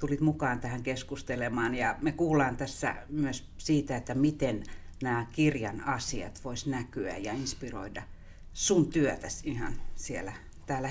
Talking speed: 130 wpm